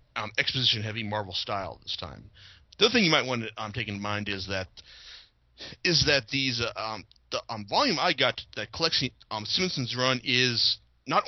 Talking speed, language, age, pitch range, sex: 195 wpm, English, 30-49, 100-140 Hz, male